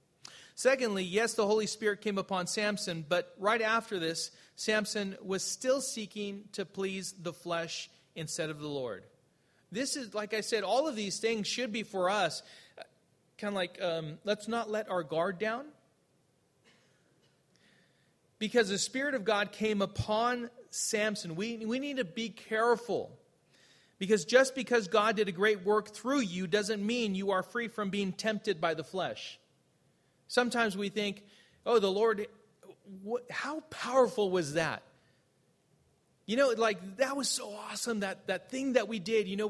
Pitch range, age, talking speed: 185-225 Hz, 40-59, 165 wpm